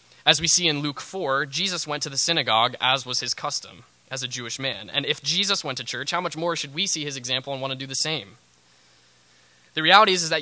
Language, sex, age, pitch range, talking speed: English, male, 20-39, 110-155 Hz, 255 wpm